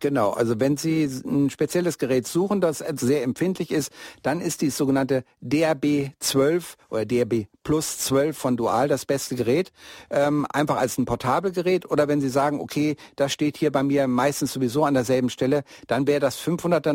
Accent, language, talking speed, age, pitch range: German, German, 180 wpm, 60-79, 135-170 Hz